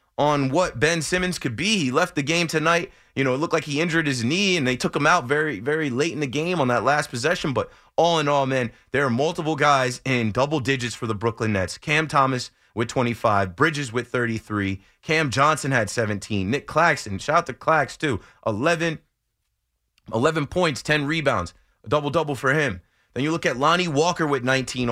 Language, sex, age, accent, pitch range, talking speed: English, male, 30-49, American, 110-155 Hz, 205 wpm